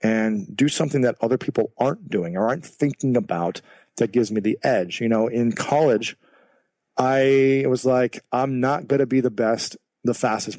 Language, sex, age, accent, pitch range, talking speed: English, male, 40-59, American, 110-125 Hz, 185 wpm